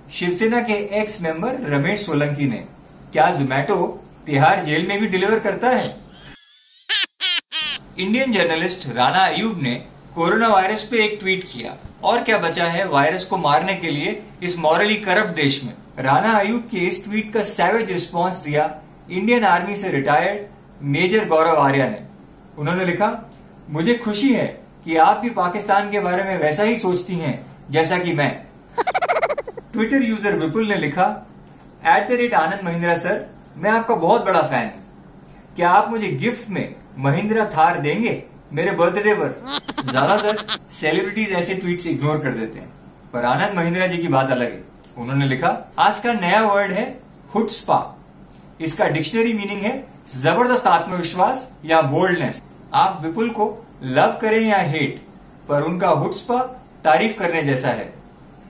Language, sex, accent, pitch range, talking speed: Hindi, male, native, 155-215 Hz, 130 wpm